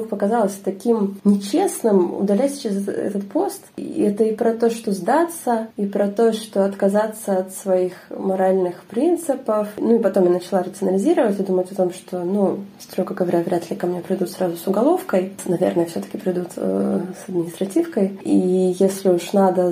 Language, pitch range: Russian, 185-215 Hz